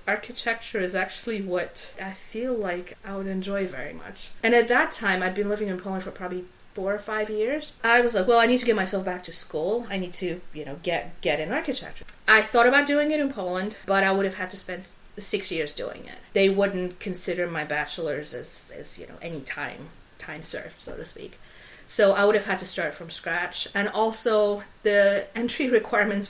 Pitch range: 180-220 Hz